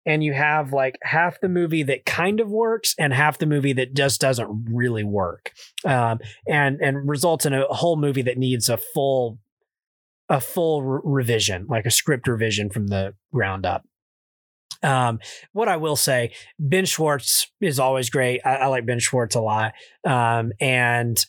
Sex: male